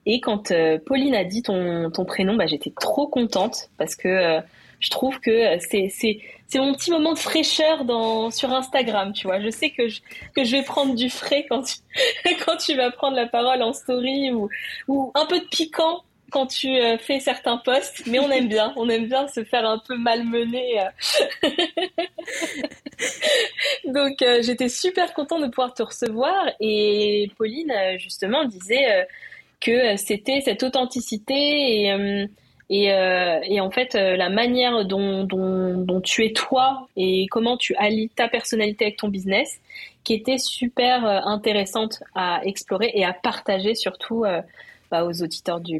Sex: female